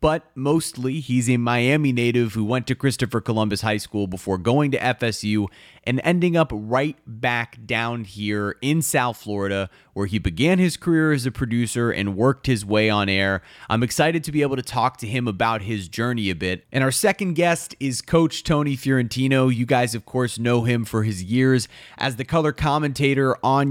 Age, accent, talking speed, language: 30-49, American, 195 wpm, English